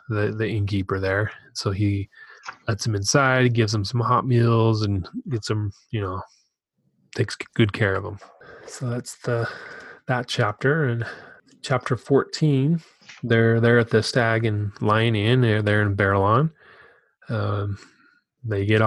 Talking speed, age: 155 wpm, 20-39